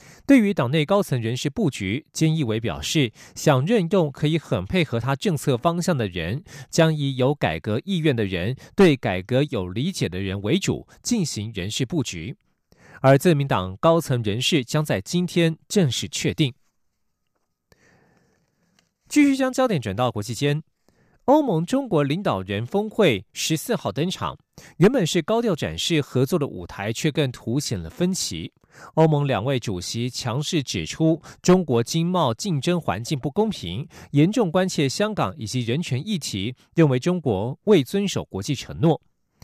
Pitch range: 125-175 Hz